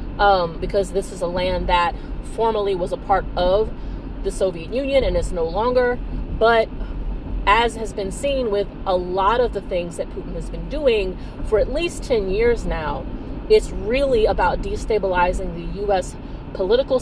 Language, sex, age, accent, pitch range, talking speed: English, female, 30-49, American, 190-245 Hz, 170 wpm